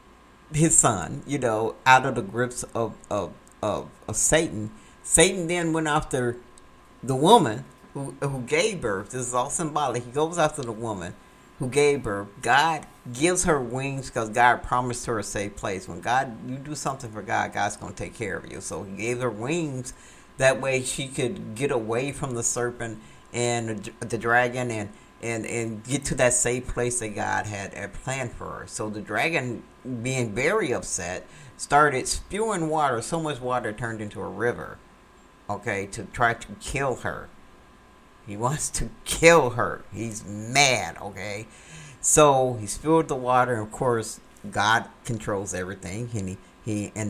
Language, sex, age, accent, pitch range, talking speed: English, male, 50-69, American, 110-150 Hz, 175 wpm